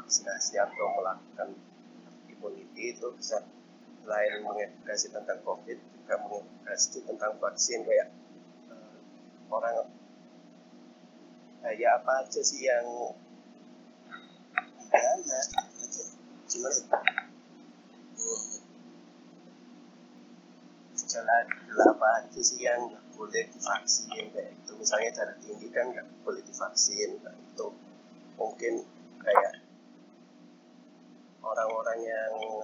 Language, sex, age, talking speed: Indonesian, male, 30-49, 90 wpm